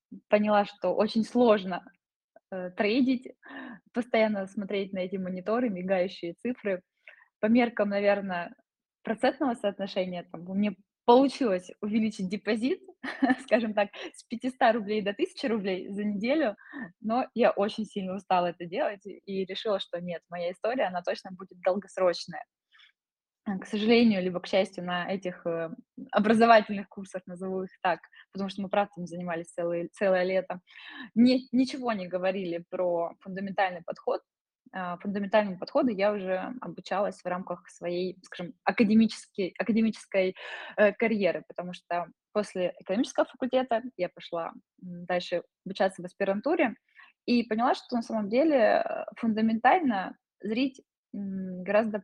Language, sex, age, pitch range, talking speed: Russian, female, 20-39, 185-235 Hz, 120 wpm